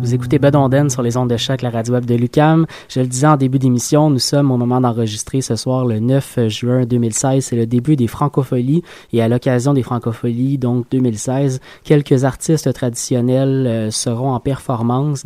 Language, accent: French, Canadian